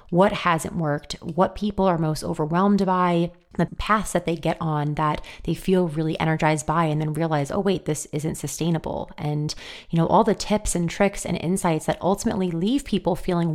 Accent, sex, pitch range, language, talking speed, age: American, female, 155-190 Hz, English, 195 wpm, 30-49